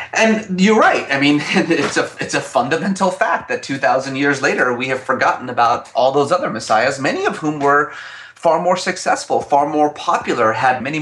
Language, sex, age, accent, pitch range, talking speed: English, male, 30-49, American, 115-175 Hz, 185 wpm